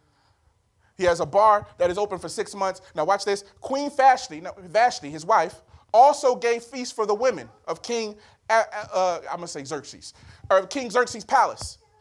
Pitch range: 170-245 Hz